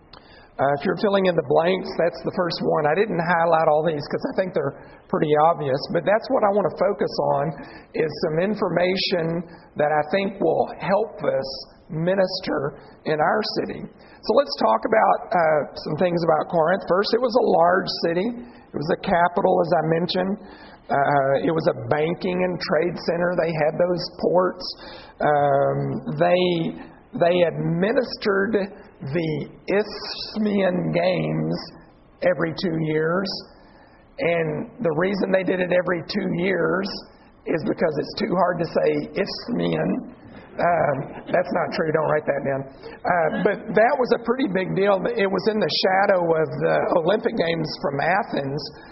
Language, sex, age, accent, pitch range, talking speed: English, male, 50-69, American, 155-195 Hz, 160 wpm